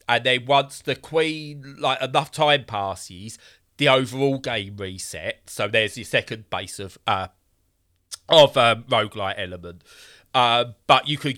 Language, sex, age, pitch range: English, male, 30-49, 100-130 Hz